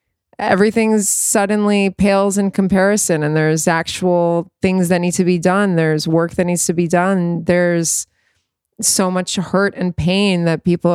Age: 20-39